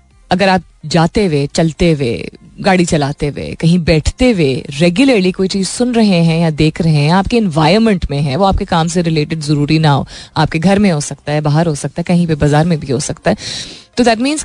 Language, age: Hindi, 30-49